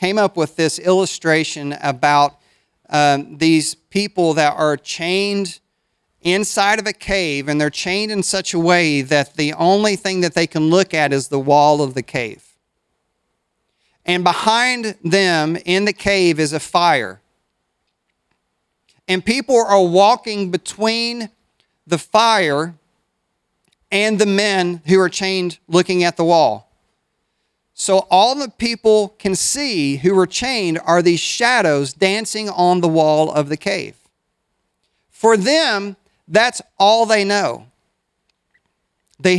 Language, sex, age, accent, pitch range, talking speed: English, male, 40-59, American, 160-205 Hz, 135 wpm